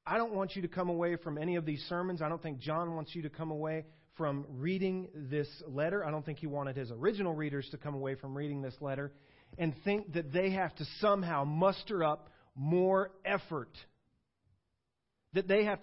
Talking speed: 205 wpm